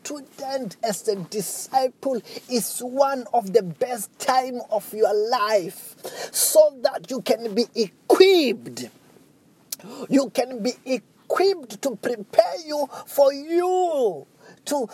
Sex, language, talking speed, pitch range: male, English, 115 wpm, 205-280 Hz